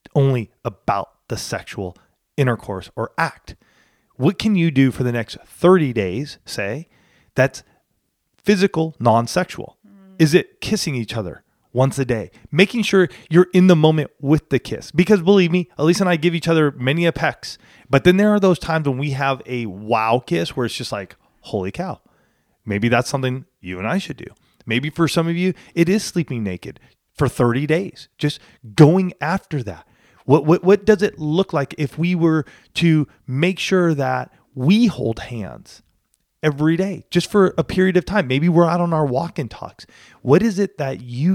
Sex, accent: male, American